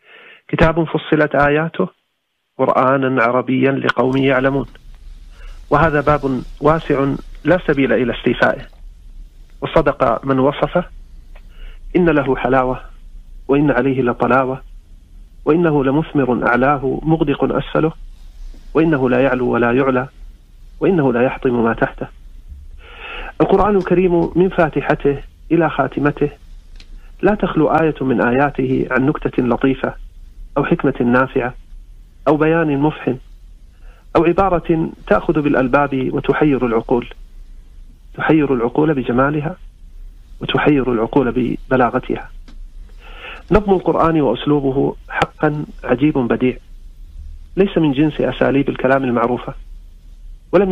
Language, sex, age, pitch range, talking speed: Arabic, male, 40-59, 115-155 Hz, 100 wpm